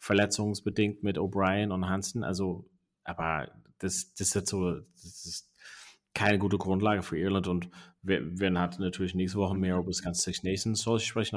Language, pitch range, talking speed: German, 90-105 Hz, 175 wpm